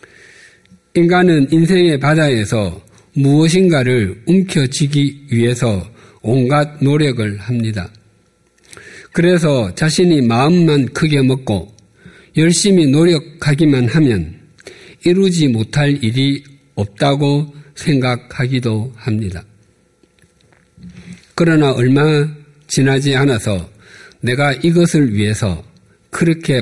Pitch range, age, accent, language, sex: 110-155 Hz, 50-69, native, Korean, male